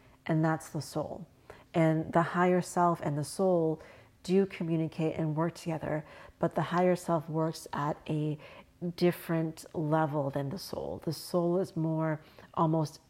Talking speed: 150 wpm